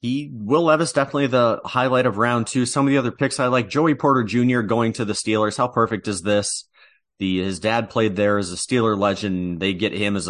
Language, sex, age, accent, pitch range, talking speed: English, male, 30-49, American, 95-115 Hz, 235 wpm